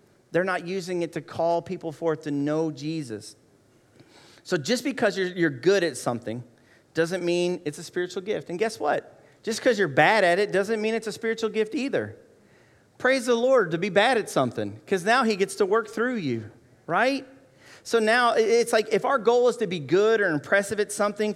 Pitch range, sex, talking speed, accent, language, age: 130-195 Hz, male, 205 wpm, American, English, 40-59